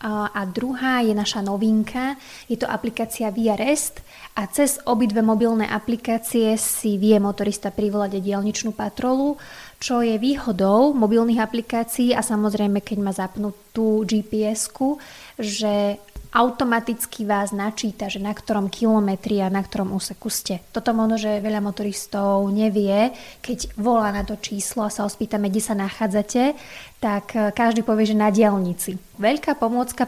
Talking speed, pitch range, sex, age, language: 145 wpm, 205-230 Hz, female, 20-39, Slovak